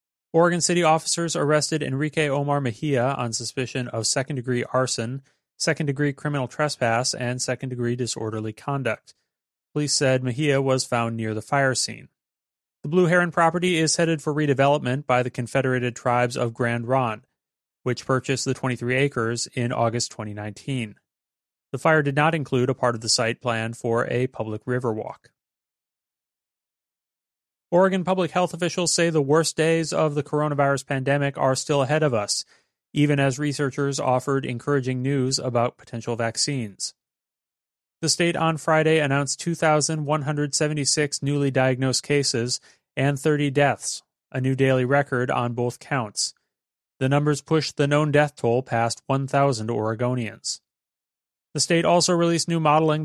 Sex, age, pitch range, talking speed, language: male, 30-49, 125-150 Hz, 145 wpm, English